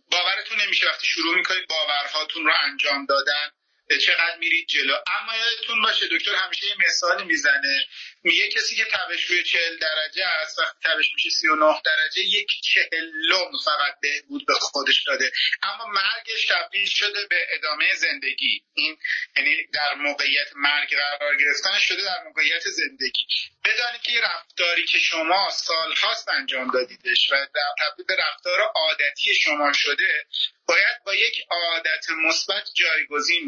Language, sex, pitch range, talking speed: Persian, male, 150-205 Hz, 140 wpm